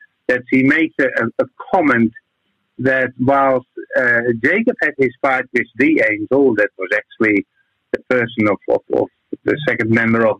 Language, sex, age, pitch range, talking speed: English, male, 50-69, 120-170 Hz, 165 wpm